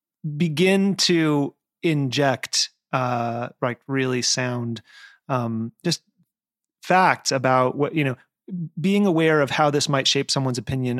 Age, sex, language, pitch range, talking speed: 30-49, male, English, 120-155 Hz, 125 wpm